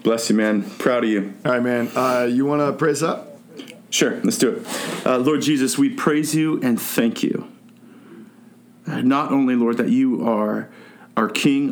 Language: English